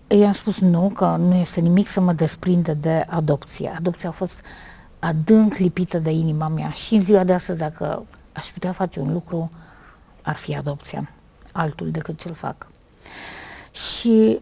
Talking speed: 165 wpm